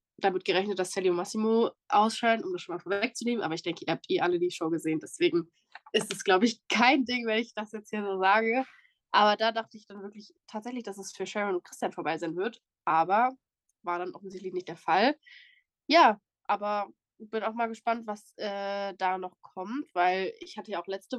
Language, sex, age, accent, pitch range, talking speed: German, female, 20-39, German, 190-245 Hz, 220 wpm